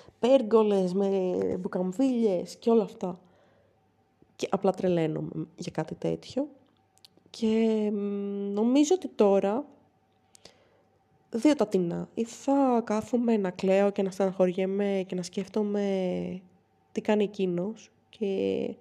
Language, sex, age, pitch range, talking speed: Greek, female, 20-39, 180-235 Hz, 115 wpm